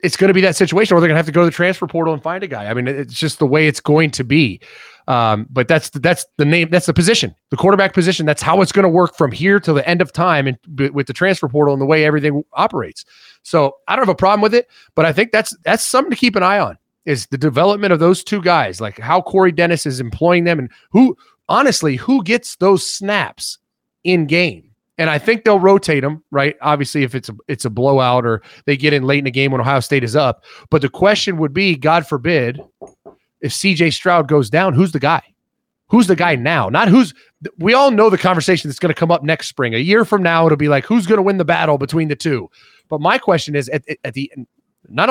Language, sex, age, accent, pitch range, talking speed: English, male, 30-49, American, 140-190 Hz, 255 wpm